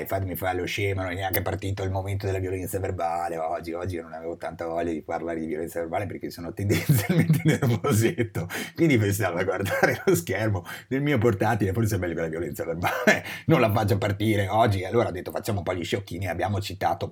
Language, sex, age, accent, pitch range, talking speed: Italian, male, 30-49, native, 95-120 Hz, 205 wpm